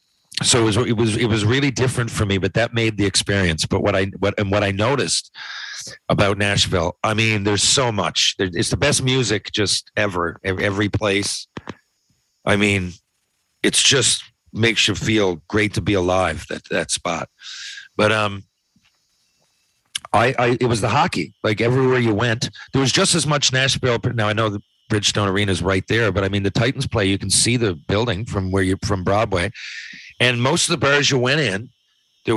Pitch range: 100-130 Hz